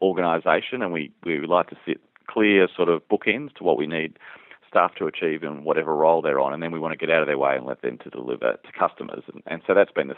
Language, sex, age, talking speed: English, male, 40-59, 275 wpm